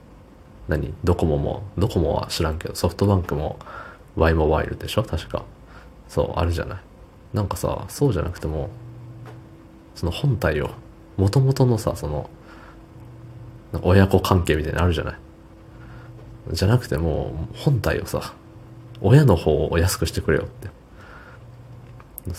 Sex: male